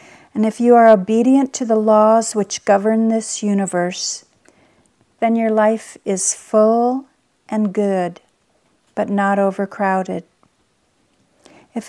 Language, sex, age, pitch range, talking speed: English, female, 50-69, 200-235 Hz, 115 wpm